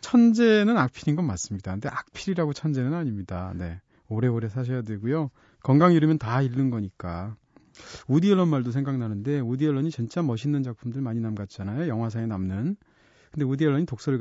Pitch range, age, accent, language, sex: 115-160 Hz, 40-59, native, Korean, male